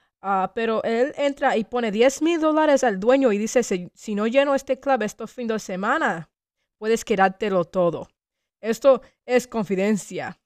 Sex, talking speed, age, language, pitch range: female, 165 wpm, 20-39, English, 190-240 Hz